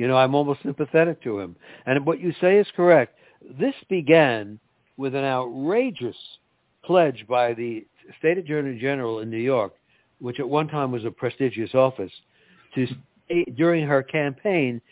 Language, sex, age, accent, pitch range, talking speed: English, male, 60-79, American, 120-165 Hz, 155 wpm